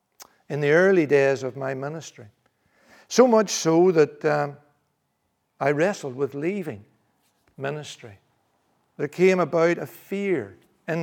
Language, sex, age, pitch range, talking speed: English, male, 60-79, 135-165 Hz, 125 wpm